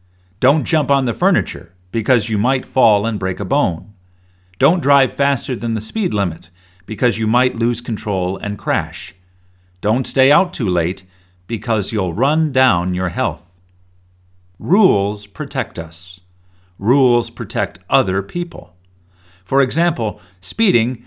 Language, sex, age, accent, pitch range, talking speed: English, male, 50-69, American, 90-140 Hz, 135 wpm